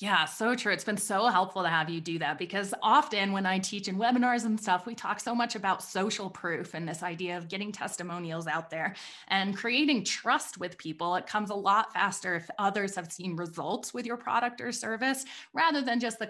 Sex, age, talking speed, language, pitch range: female, 20-39, 220 wpm, English, 175-225 Hz